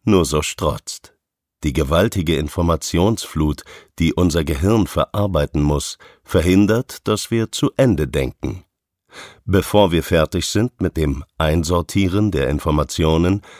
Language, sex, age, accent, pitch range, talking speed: German, male, 50-69, German, 80-105 Hz, 115 wpm